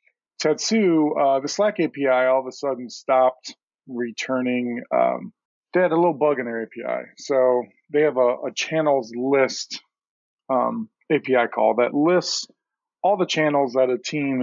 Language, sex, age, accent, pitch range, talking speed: English, male, 40-59, American, 120-145 Hz, 160 wpm